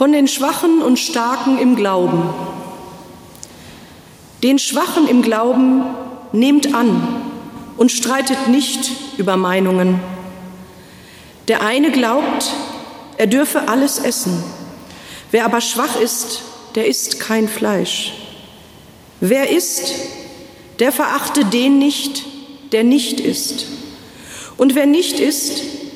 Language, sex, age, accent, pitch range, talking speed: German, female, 40-59, German, 210-275 Hz, 105 wpm